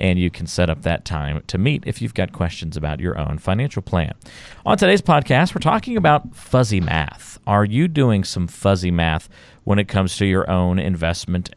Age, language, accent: 40-59, English, American